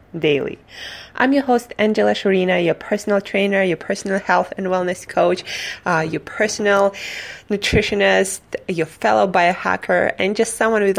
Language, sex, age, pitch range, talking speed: English, female, 20-39, 175-205 Hz, 140 wpm